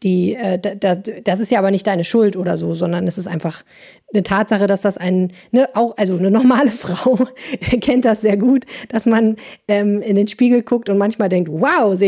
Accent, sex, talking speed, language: German, female, 210 wpm, German